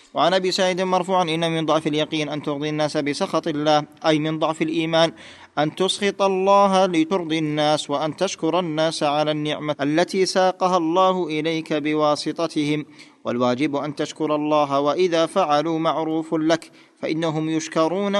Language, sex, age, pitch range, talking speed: Arabic, male, 40-59, 150-185 Hz, 140 wpm